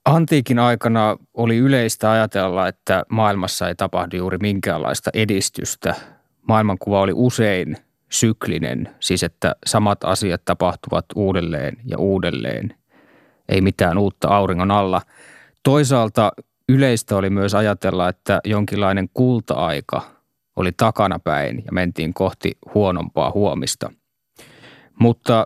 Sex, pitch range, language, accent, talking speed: male, 95-115 Hz, Finnish, native, 105 wpm